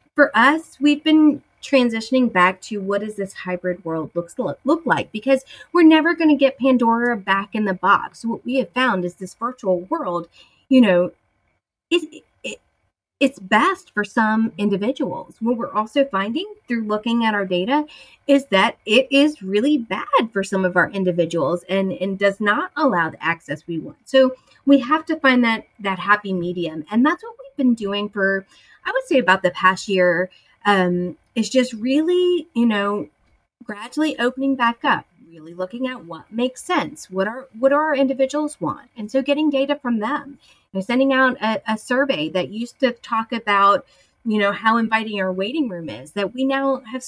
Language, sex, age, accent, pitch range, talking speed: English, female, 30-49, American, 195-275 Hz, 190 wpm